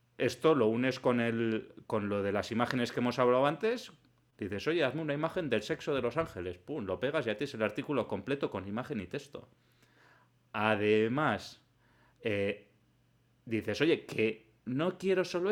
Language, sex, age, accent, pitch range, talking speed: Spanish, male, 30-49, Spanish, 110-145 Hz, 170 wpm